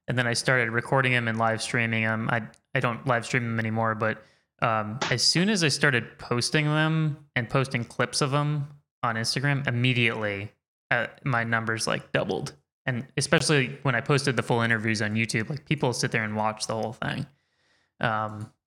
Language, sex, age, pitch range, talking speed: English, male, 20-39, 115-140 Hz, 190 wpm